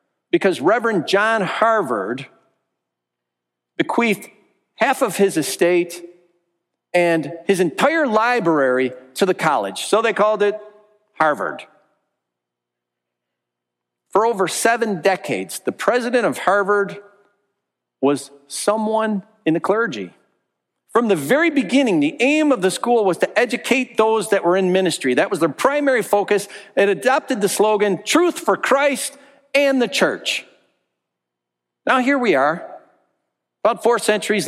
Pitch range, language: 175-255 Hz, English